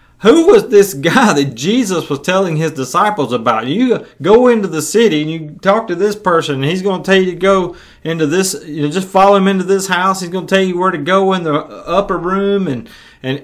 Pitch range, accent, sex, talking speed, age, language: 125-180 Hz, American, male, 240 wpm, 30-49, English